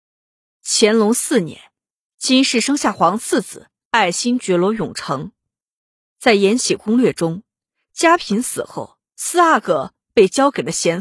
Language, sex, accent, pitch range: Chinese, female, native, 200-260 Hz